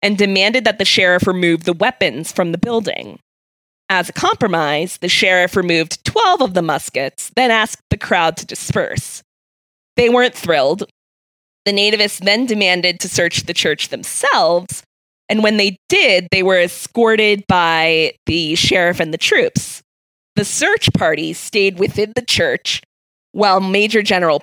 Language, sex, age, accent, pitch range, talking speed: English, female, 20-39, American, 165-220 Hz, 150 wpm